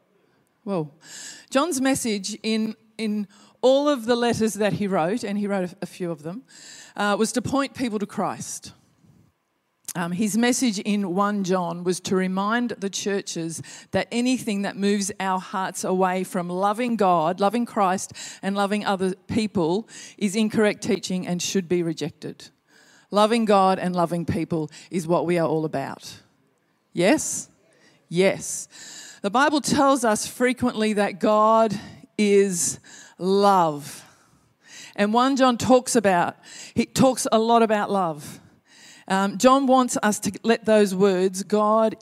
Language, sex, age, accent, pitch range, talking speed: English, female, 40-59, Australian, 180-225 Hz, 145 wpm